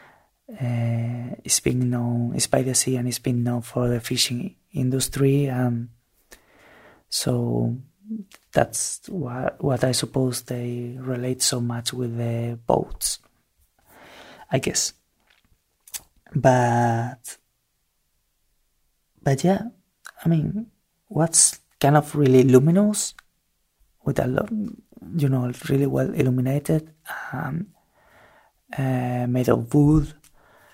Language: English